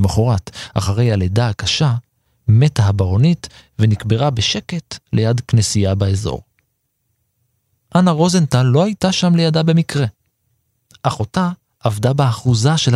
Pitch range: 110-145 Hz